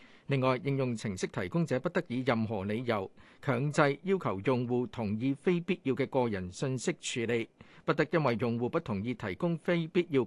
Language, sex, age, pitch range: Chinese, male, 50-69, 110-150 Hz